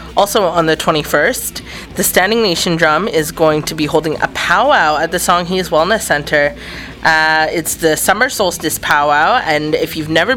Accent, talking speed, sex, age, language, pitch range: American, 175 wpm, female, 20-39, English, 145-175 Hz